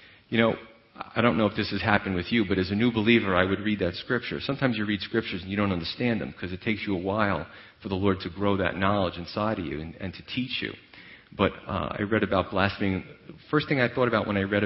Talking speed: 265 wpm